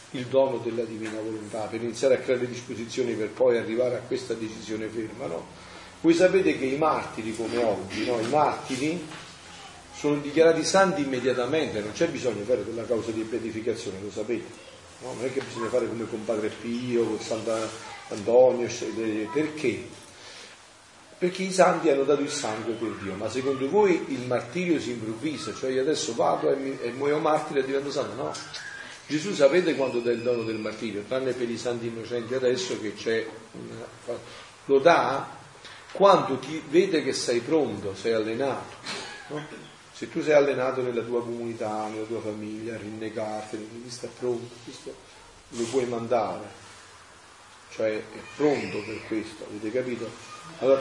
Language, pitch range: Italian, 115-140 Hz